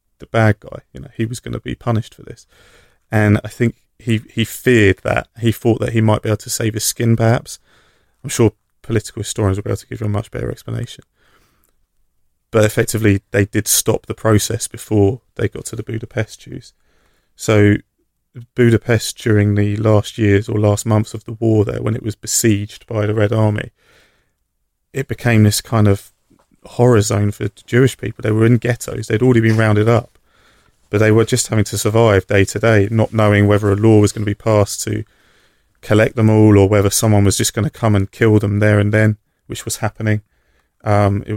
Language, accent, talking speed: English, British, 205 wpm